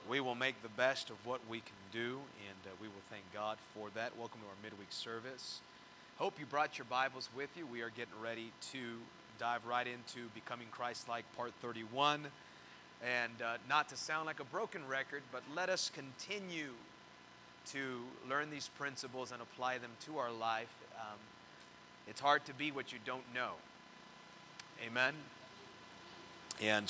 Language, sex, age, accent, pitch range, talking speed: English, male, 30-49, American, 115-145 Hz, 170 wpm